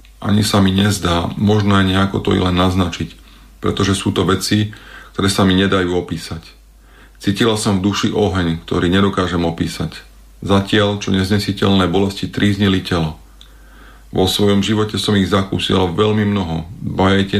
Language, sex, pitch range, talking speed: Slovak, male, 90-105 Hz, 150 wpm